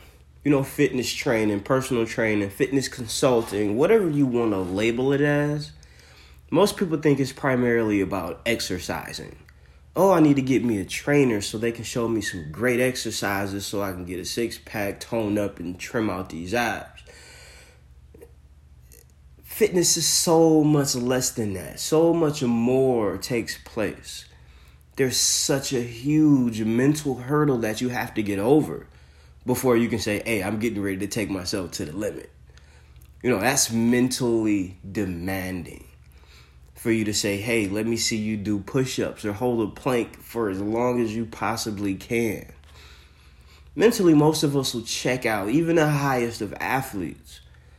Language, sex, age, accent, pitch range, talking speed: English, male, 30-49, American, 80-125 Hz, 160 wpm